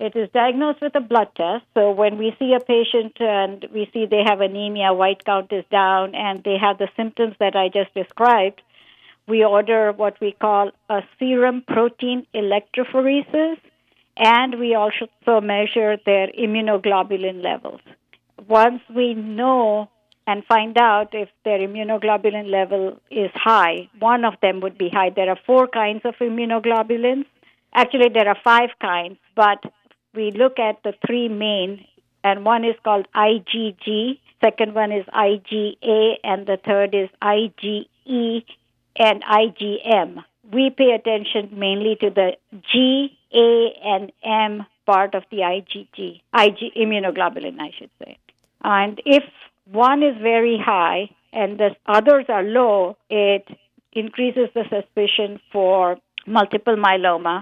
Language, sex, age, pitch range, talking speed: English, female, 50-69, 200-230 Hz, 140 wpm